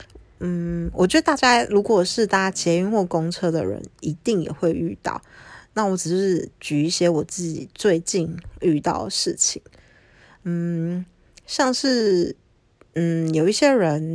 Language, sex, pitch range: Chinese, female, 155-205 Hz